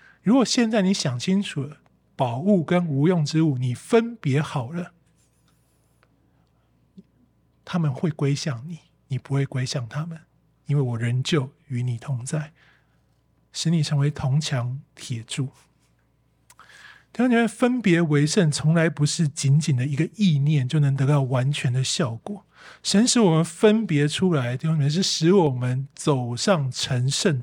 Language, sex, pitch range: Chinese, male, 135-170 Hz